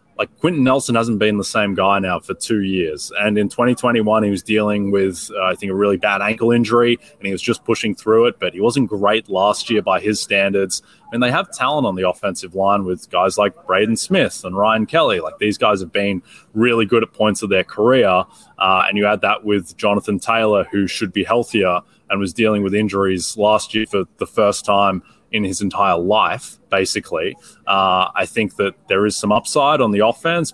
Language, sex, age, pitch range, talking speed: English, male, 20-39, 100-115 Hz, 215 wpm